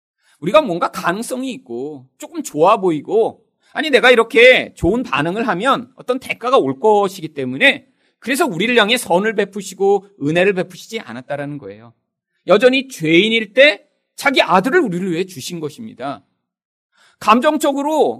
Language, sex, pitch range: Korean, male, 165-260 Hz